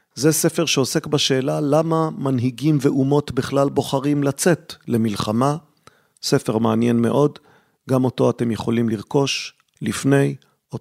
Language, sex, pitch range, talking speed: Hebrew, male, 115-145 Hz, 115 wpm